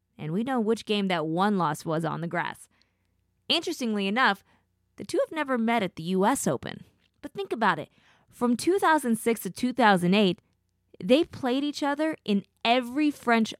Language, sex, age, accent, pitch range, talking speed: English, female, 20-39, American, 170-235 Hz, 170 wpm